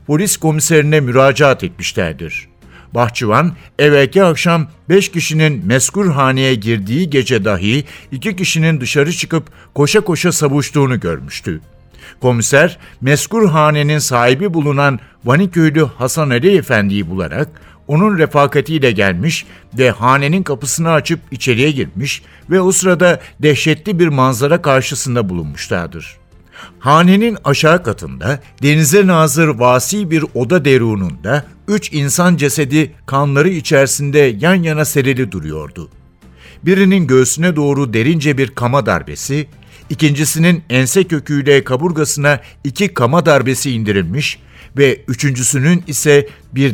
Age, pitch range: 60-79, 130-160 Hz